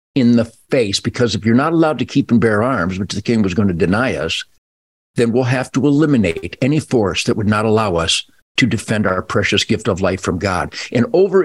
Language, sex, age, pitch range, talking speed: English, male, 50-69, 115-175 Hz, 230 wpm